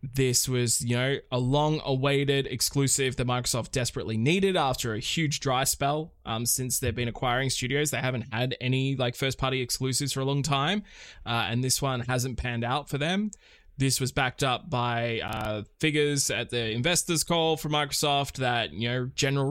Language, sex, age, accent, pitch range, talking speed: English, male, 20-39, Australian, 120-150 Hz, 180 wpm